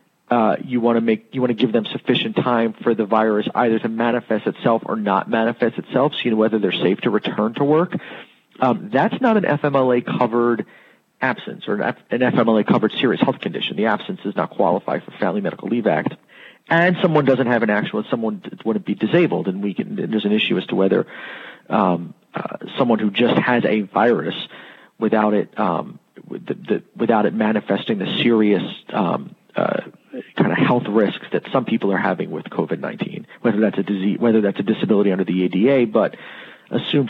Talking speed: 195 wpm